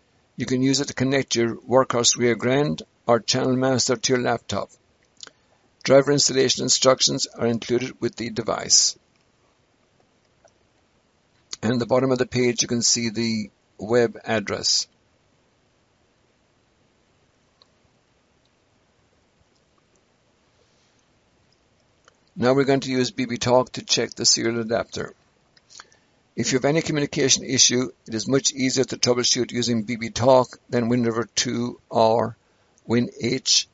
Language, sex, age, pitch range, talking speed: English, male, 60-79, 115-130 Hz, 120 wpm